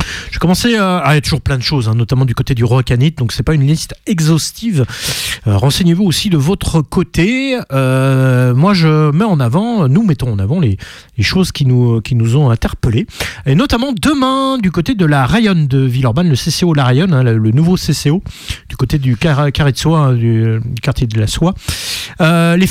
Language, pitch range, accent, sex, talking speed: French, 130-205 Hz, French, male, 220 wpm